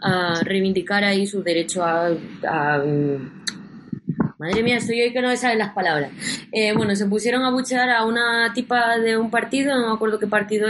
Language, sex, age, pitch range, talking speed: Spanish, female, 20-39, 195-235 Hz, 190 wpm